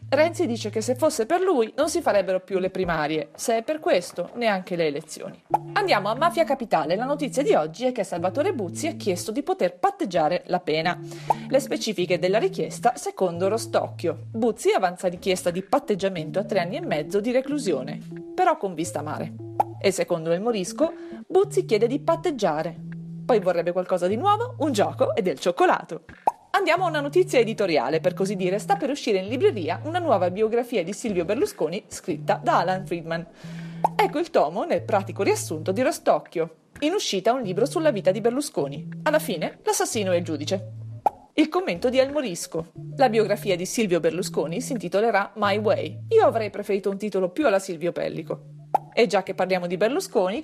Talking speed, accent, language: 180 wpm, native, Italian